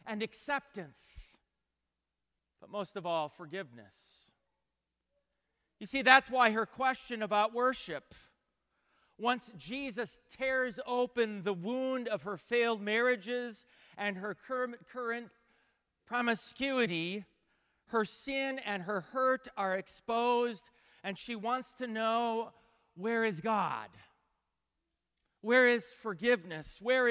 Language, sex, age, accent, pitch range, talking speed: English, male, 40-59, American, 195-245 Hz, 105 wpm